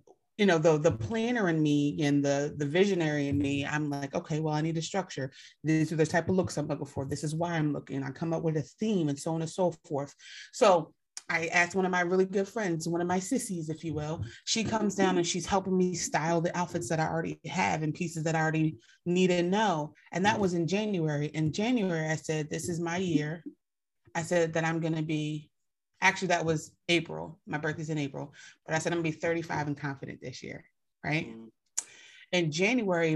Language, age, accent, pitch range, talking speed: English, 30-49, American, 150-180 Hz, 230 wpm